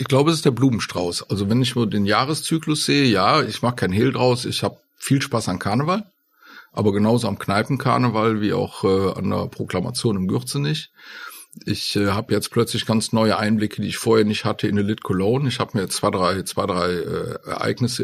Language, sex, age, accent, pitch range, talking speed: German, male, 50-69, German, 105-130 Hz, 205 wpm